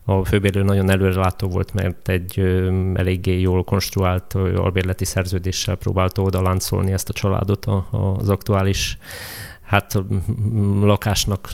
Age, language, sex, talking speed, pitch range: 30-49, Hungarian, male, 130 wpm, 95-105 Hz